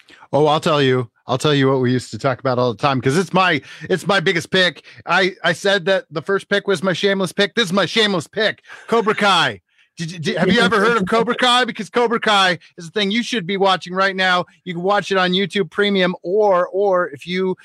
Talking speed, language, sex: 250 wpm, English, male